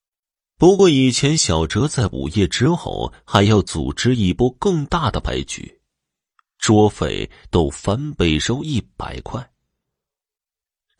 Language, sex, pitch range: Chinese, male, 85-125 Hz